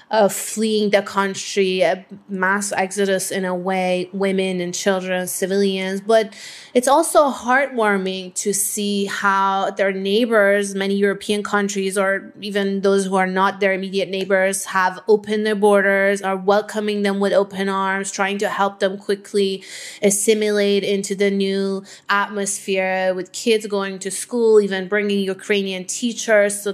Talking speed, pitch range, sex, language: 145 wpm, 195-215 Hz, female, English